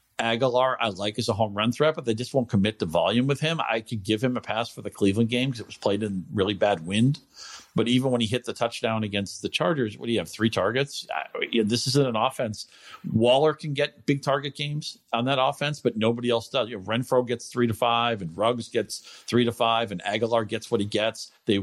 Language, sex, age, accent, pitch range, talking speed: English, male, 50-69, American, 100-125 Hz, 250 wpm